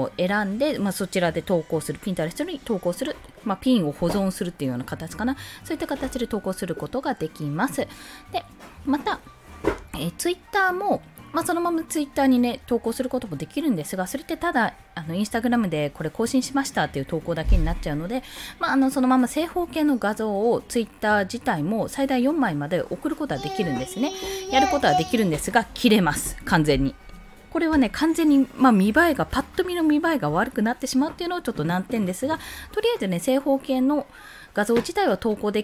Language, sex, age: Japanese, female, 20-39